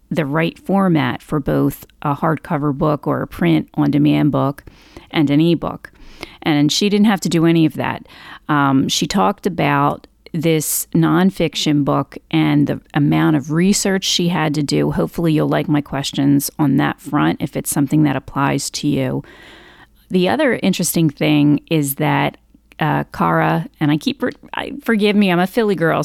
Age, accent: 40-59, American